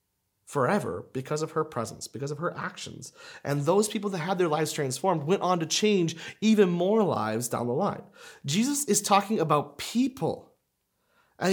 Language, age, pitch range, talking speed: English, 30-49, 160-240 Hz, 170 wpm